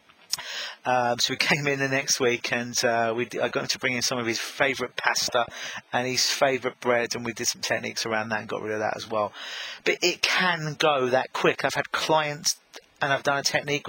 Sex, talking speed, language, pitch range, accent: male, 235 wpm, English, 125-155 Hz, British